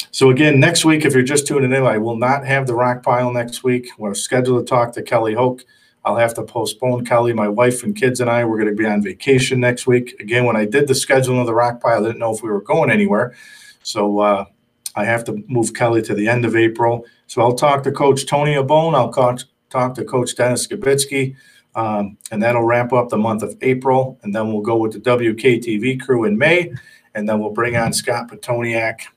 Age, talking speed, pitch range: 40-59, 235 wpm, 115-135 Hz